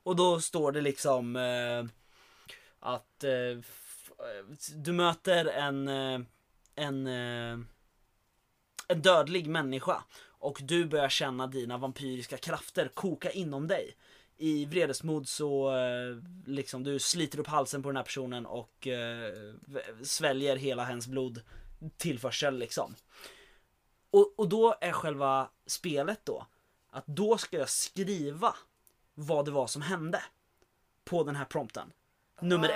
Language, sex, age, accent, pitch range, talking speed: Swedish, male, 20-39, native, 130-180 Hz, 125 wpm